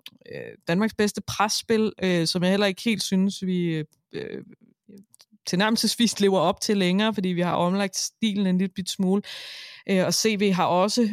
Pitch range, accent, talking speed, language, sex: 175-220 Hz, native, 160 wpm, Danish, female